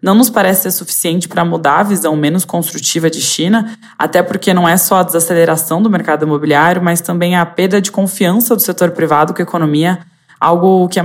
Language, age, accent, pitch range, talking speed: Portuguese, 20-39, Brazilian, 165-195 Hz, 200 wpm